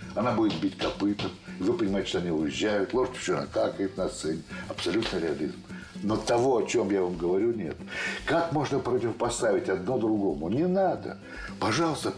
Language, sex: Russian, male